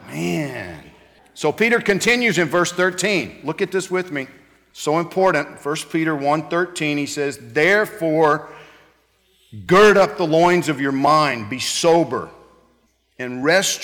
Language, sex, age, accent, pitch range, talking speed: English, male, 50-69, American, 120-170 Hz, 135 wpm